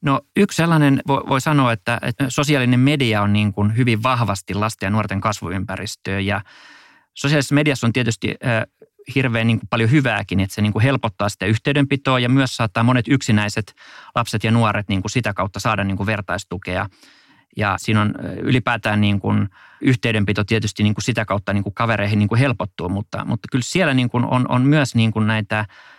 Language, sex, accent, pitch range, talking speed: Finnish, male, native, 100-125 Hz, 140 wpm